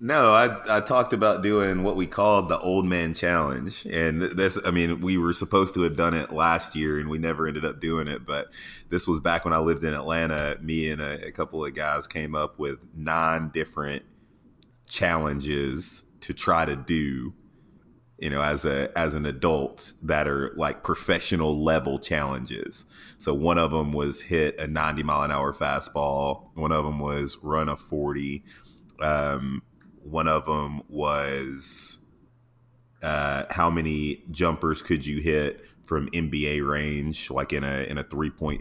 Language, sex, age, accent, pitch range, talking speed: English, male, 30-49, American, 75-85 Hz, 175 wpm